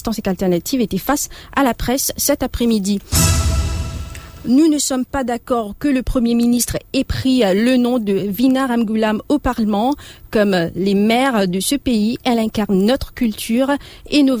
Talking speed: 160 wpm